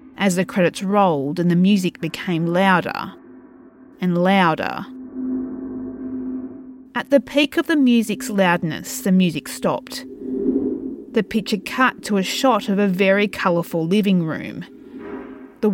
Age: 30-49